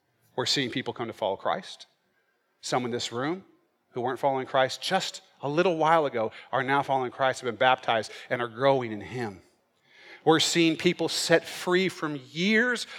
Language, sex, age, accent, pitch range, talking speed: English, male, 40-59, American, 135-185 Hz, 180 wpm